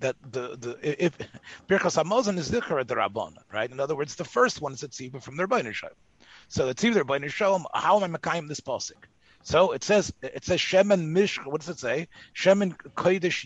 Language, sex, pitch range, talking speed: English, male, 145-200 Hz, 205 wpm